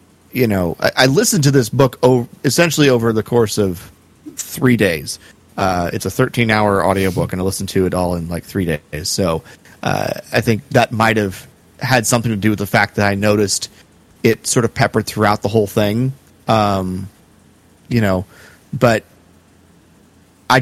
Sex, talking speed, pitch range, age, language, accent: male, 170 wpm, 95-130 Hz, 30-49, English, American